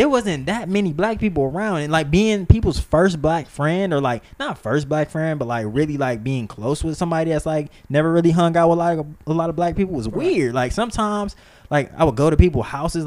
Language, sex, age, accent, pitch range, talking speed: English, male, 20-39, American, 130-180 Hz, 245 wpm